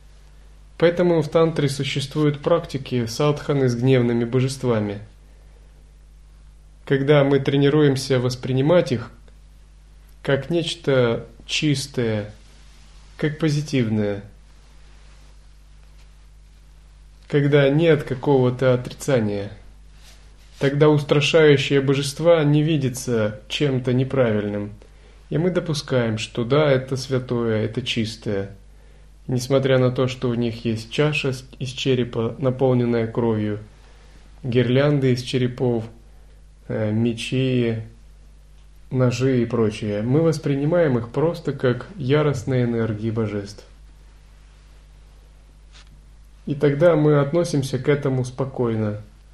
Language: Russian